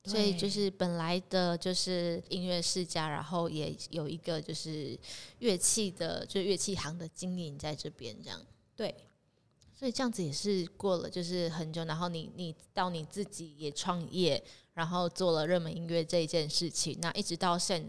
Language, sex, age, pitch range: Chinese, female, 20-39, 165-190 Hz